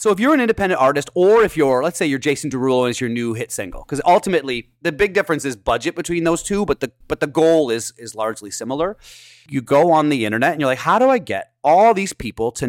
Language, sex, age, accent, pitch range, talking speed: English, male, 30-49, American, 115-150 Hz, 260 wpm